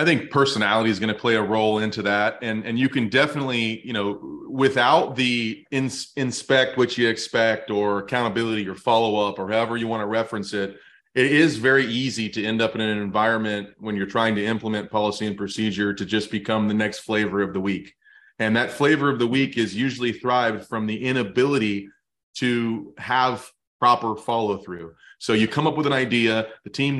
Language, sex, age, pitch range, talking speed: English, male, 30-49, 110-130 Hz, 200 wpm